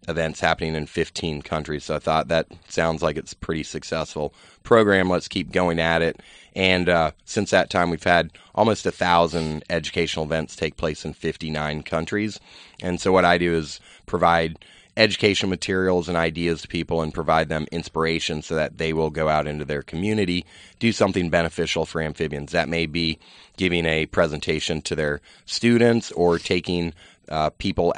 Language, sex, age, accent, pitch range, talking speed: English, male, 30-49, American, 80-85 Hz, 175 wpm